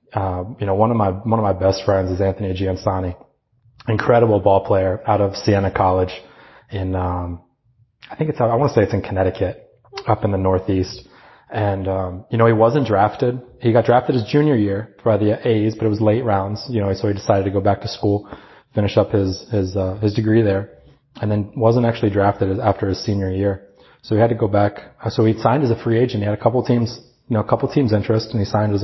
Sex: male